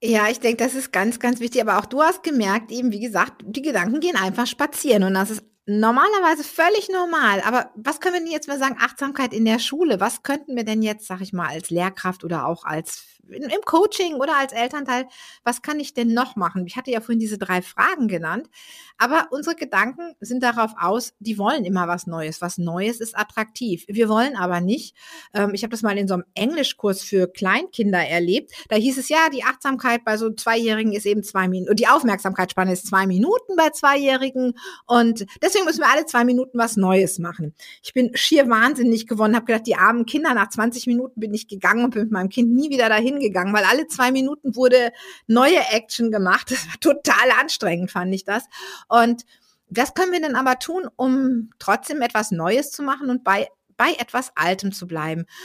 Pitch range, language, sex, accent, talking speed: 205-265 Hz, German, female, German, 210 wpm